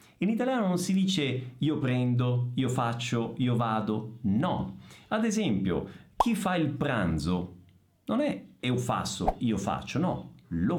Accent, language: native, Italian